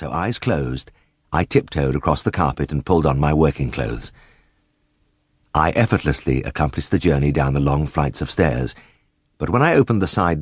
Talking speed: 180 wpm